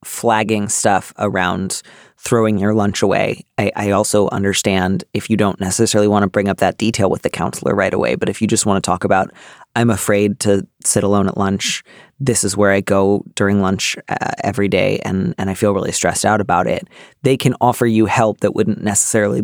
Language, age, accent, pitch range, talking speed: English, 30-49, American, 105-120 Hz, 210 wpm